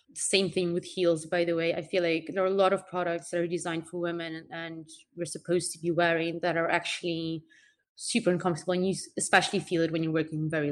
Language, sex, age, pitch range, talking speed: English, female, 20-39, 160-185 Hz, 235 wpm